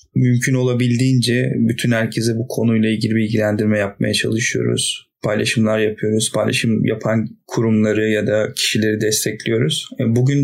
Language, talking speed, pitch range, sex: Turkish, 115 wpm, 110-125 Hz, male